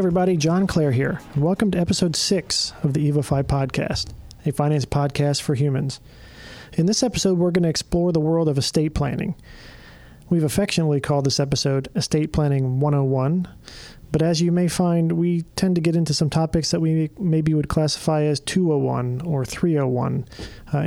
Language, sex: English, male